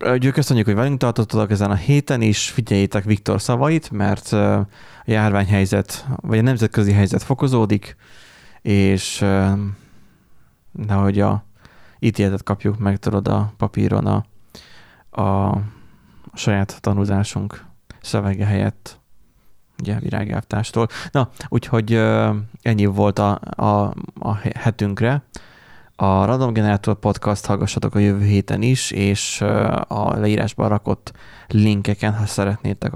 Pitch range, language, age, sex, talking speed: 100-115 Hz, Hungarian, 20-39, male, 110 wpm